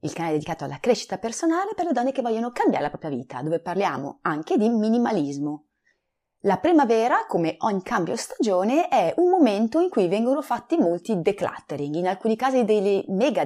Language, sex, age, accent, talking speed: Italian, female, 30-49, native, 185 wpm